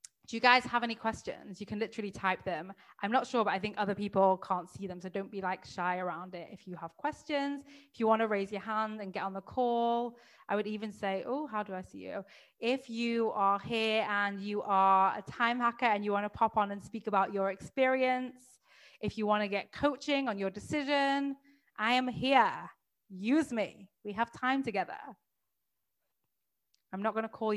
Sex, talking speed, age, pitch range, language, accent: female, 205 wpm, 20-39, 190-235 Hz, English, British